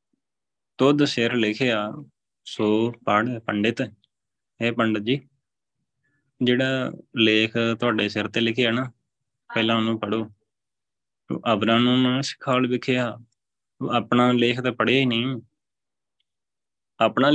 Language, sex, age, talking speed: Punjabi, male, 20-39, 115 wpm